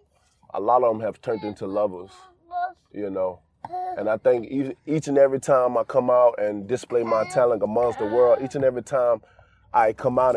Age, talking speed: 20-39, 195 wpm